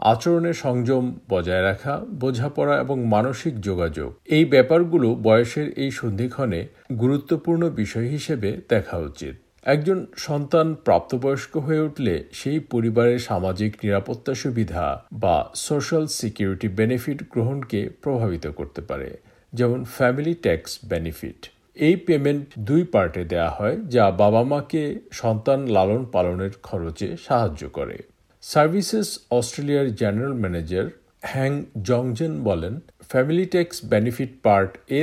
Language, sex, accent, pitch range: Bengali, male, native, 105-150 Hz